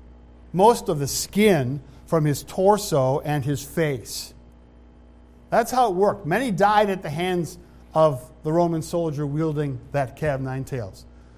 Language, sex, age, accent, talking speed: English, male, 50-69, American, 150 wpm